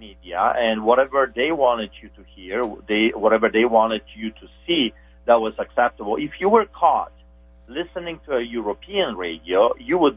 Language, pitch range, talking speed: English, 90-125 Hz, 170 wpm